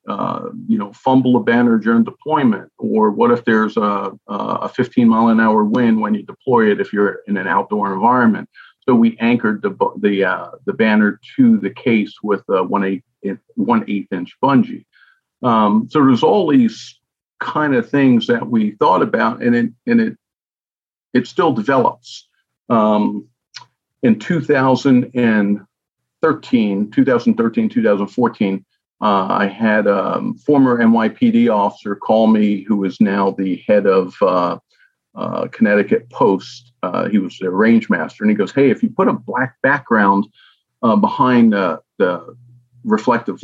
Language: English